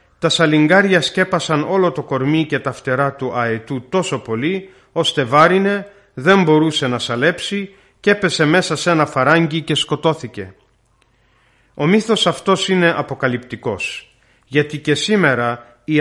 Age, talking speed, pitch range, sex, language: 40-59, 135 wpm, 125-175 Hz, male, Greek